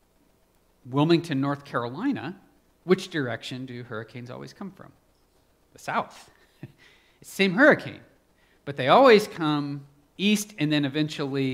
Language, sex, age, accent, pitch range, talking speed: English, male, 40-59, American, 130-170 Hz, 125 wpm